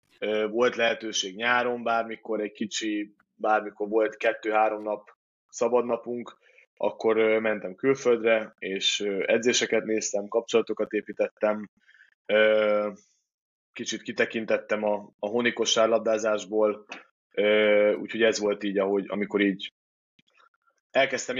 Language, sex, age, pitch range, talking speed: Hungarian, male, 20-39, 105-120 Hz, 90 wpm